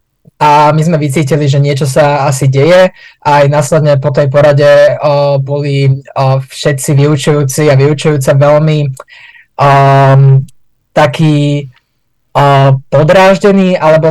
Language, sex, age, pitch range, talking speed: Slovak, male, 20-39, 140-160 Hz, 115 wpm